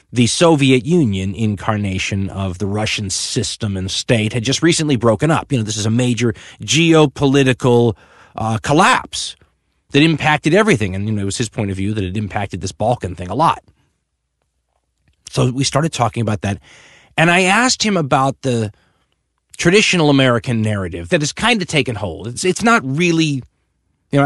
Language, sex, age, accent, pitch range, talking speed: English, male, 30-49, American, 100-135 Hz, 175 wpm